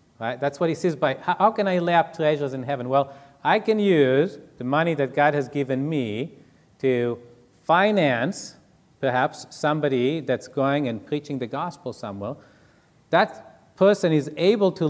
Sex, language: male, English